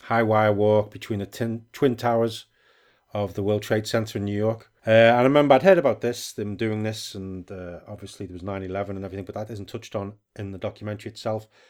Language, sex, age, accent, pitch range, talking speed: English, male, 30-49, British, 105-120 Hz, 225 wpm